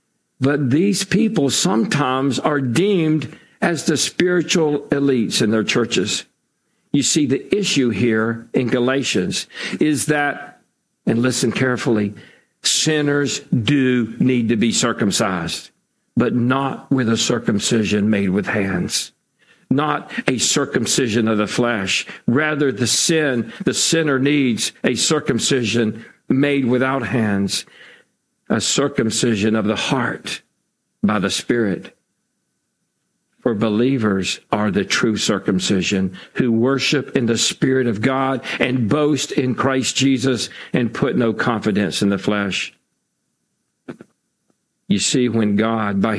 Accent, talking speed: American, 120 wpm